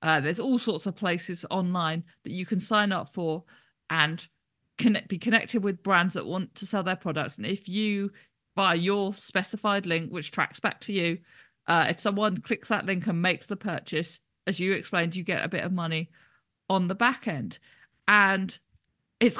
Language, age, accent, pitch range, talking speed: English, 40-59, British, 175-215 Hz, 190 wpm